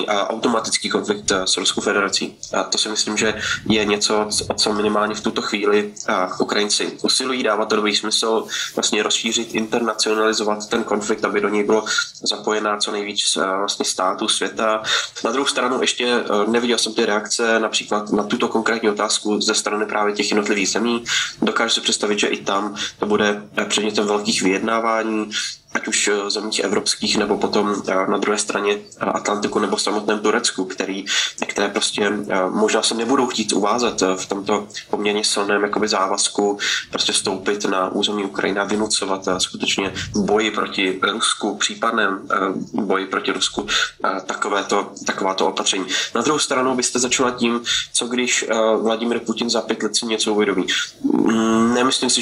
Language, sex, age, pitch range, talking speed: Slovak, male, 20-39, 105-115 Hz, 145 wpm